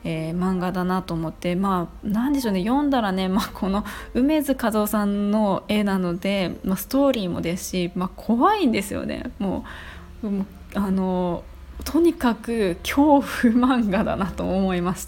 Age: 20-39